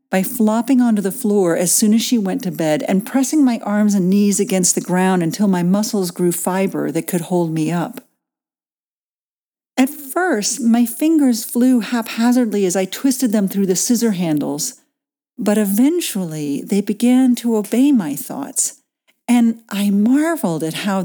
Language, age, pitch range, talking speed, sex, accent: English, 50-69, 190-255 Hz, 165 wpm, female, American